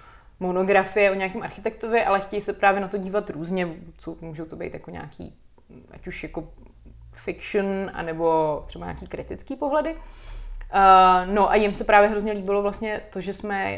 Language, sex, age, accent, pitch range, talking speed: Czech, female, 20-39, native, 175-210 Hz, 165 wpm